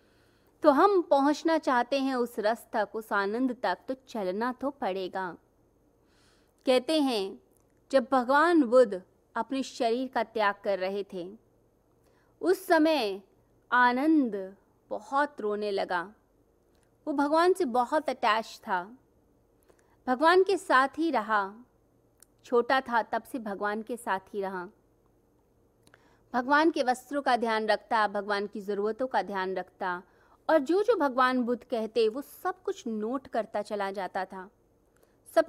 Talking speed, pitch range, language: 135 wpm, 210-285 Hz, Hindi